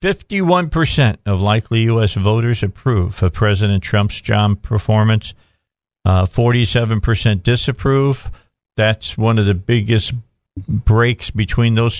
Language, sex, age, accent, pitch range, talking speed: English, male, 50-69, American, 105-140 Hz, 110 wpm